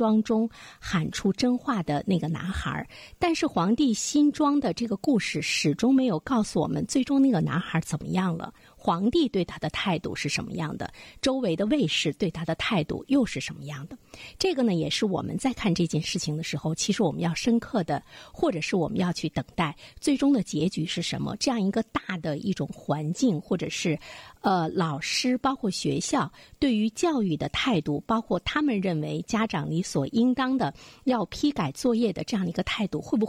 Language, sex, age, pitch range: Chinese, female, 50-69, 160-235 Hz